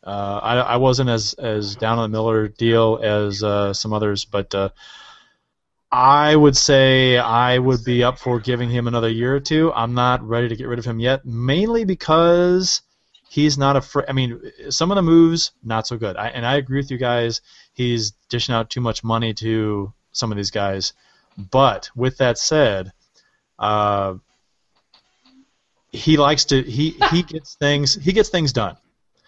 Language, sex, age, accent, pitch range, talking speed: English, male, 30-49, American, 105-135 Hz, 180 wpm